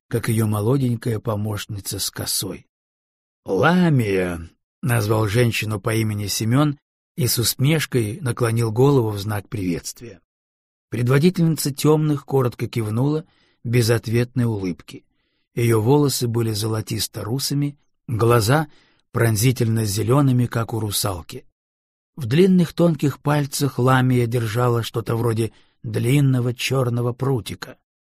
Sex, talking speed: male, 100 wpm